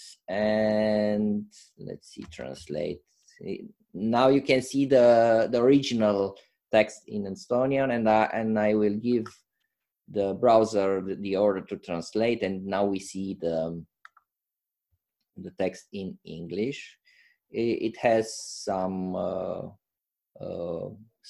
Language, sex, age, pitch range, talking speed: Romanian, male, 20-39, 100-120 Hz, 115 wpm